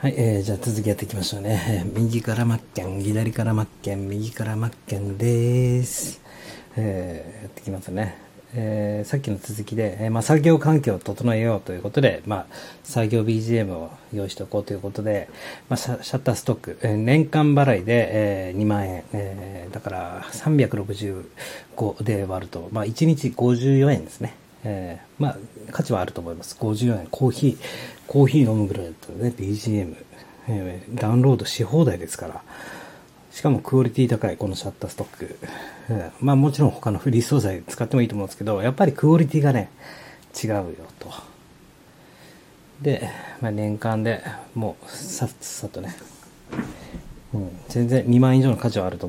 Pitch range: 100-125 Hz